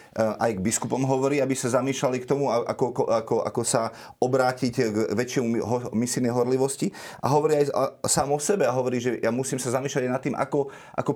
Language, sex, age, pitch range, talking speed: Slovak, male, 30-49, 120-150 Hz, 195 wpm